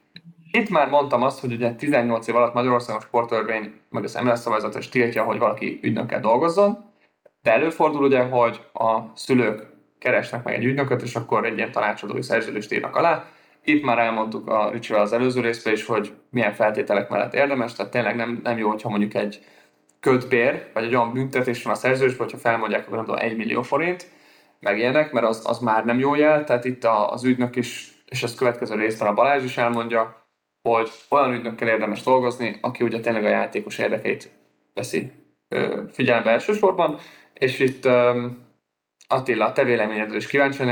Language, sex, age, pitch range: Hungarian, male, 20-39, 110-130 Hz